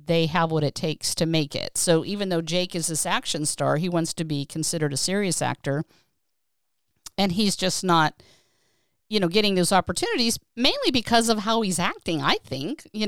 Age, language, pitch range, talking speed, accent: 50-69, English, 145-180 Hz, 195 wpm, American